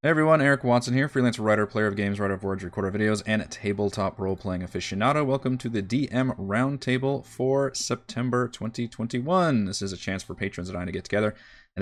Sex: male